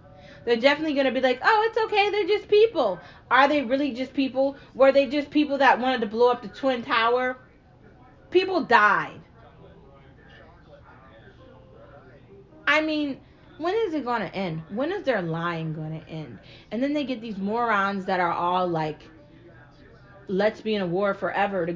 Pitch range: 175-255 Hz